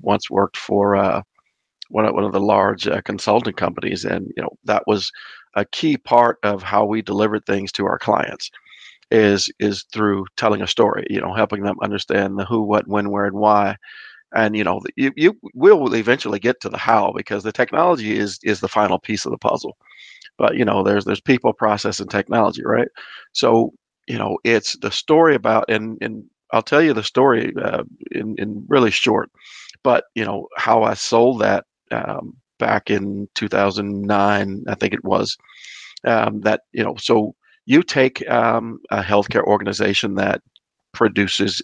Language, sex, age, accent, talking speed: English, male, 40-59, American, 180 wpm